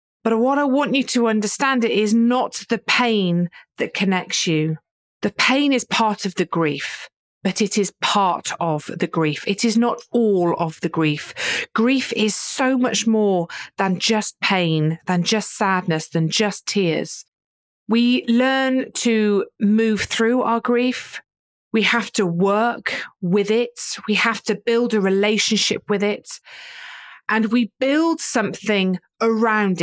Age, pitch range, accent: 40-59, 185-240 Hz, British